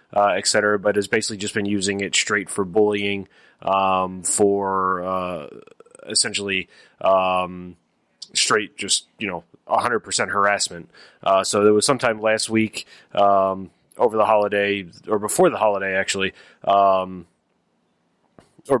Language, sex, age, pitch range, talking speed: English, male, 20-39, 95-100 Hz, 135 wpm